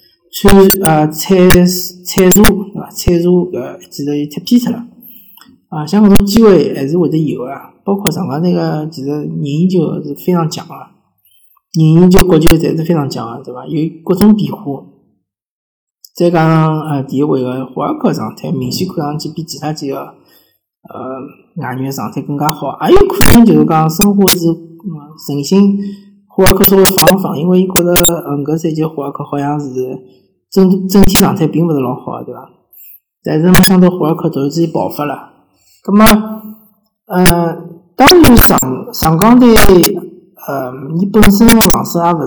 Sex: male